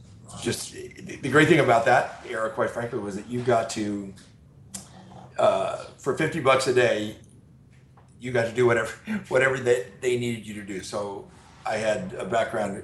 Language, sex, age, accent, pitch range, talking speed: English, male, 40-59, American, 105-125 Hz, 175 wpm